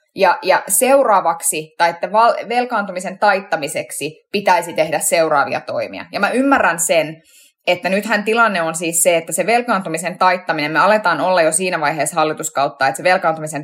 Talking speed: 155 wpm